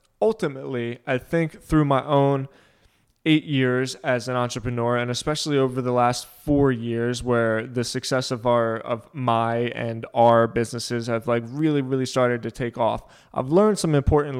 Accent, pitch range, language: American, 120-145 Hz, English